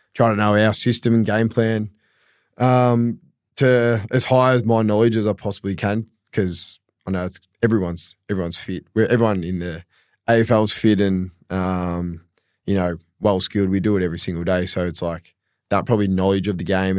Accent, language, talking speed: Australian, English, 185 wpm